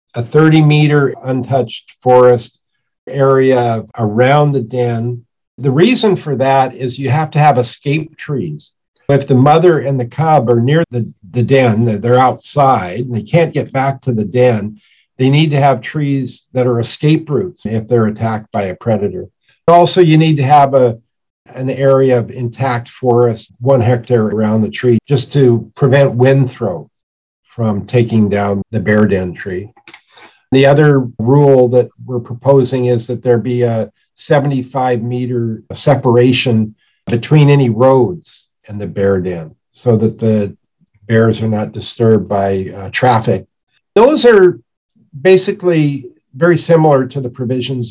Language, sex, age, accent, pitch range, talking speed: English, male, 50-69, American, 115-140 Hz, 150 wpm